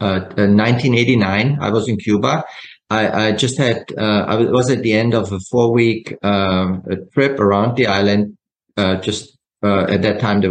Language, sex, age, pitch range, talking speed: English, male, 30-49, 100-125 Hz, 195 wpm